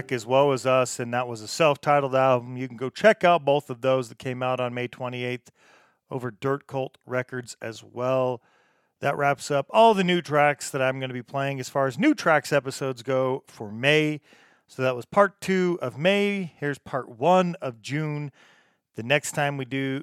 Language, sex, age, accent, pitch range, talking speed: English, male, 40-59, American, 125-145 Hz, 210 wpm